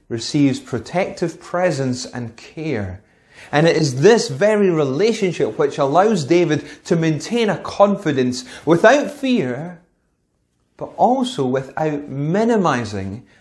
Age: 30-49